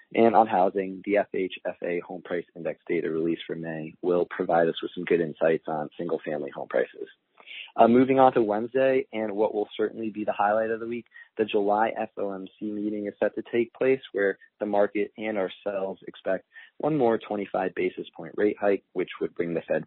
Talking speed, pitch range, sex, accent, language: 200 wpm, 95-120 Hz, male, American, English